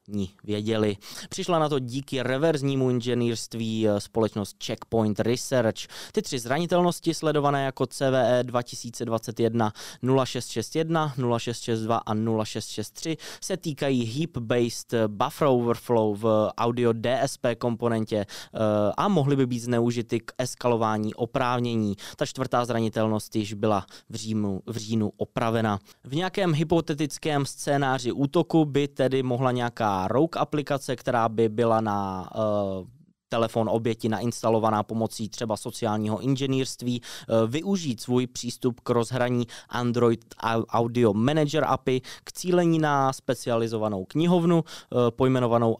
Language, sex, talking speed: Czech, male, 115 wpm